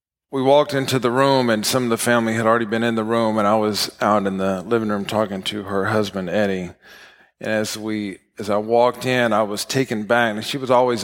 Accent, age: American, 40-59